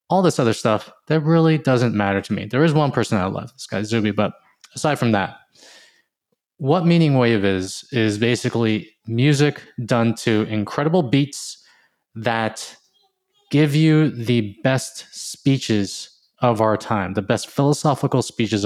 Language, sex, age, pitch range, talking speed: English, male, 20-39, 110-140 Hz, 150 wpm